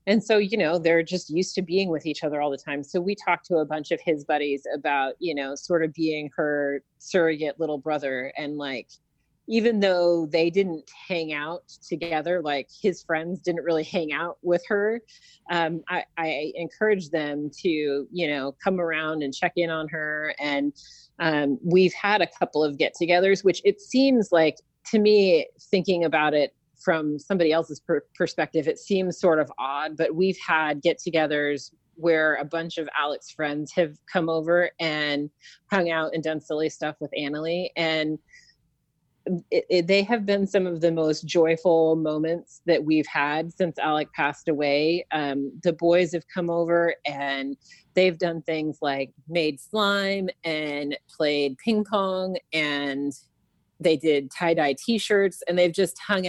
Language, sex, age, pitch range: English, female, 30-49, 150-175 Hz